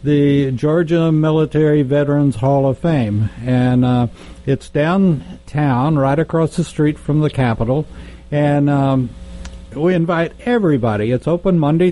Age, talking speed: 60-79, 130 wpm